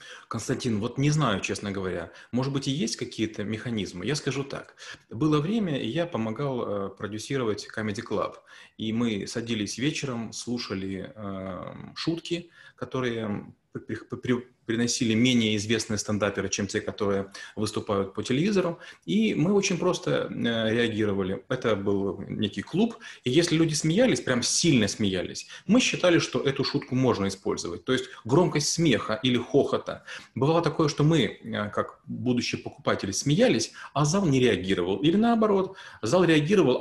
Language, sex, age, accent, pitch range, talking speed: Russian, male, 30-49, native, 110-150 Hz, 140 wpm